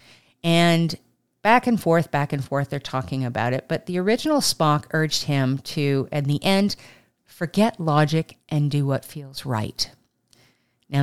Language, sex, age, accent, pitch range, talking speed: English, female, 50-69, American, 130-185 Hz, 160 wpm